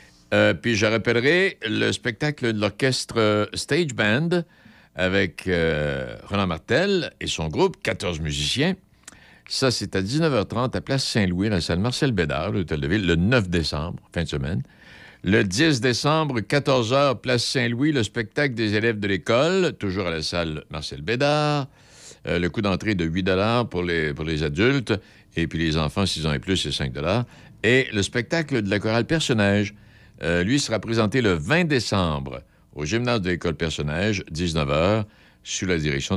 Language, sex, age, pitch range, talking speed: French, male, 60-79, 85-125 Hz, 165 wpm